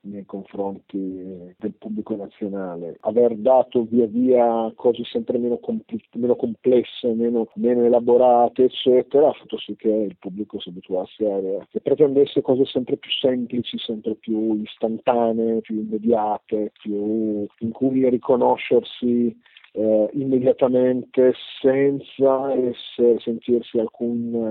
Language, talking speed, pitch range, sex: Italian, 125 wpm, 110-135 Hz, male